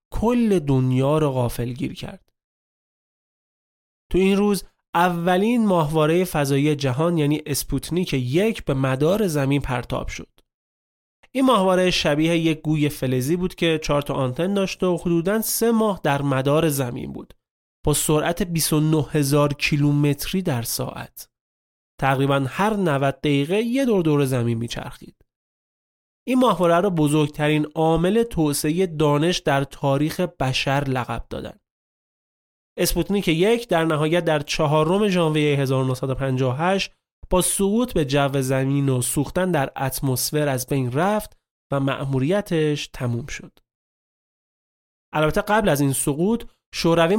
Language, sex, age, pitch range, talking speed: Persian, male, 30-49, 140-180 Hz, 120 wpm